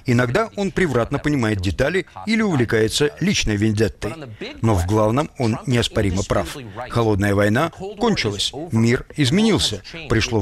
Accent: native